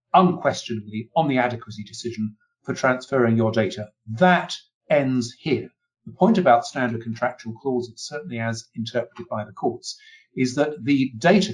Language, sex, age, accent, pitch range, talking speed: English, male, 50-69, British, 120-165 Hz, 145 wpm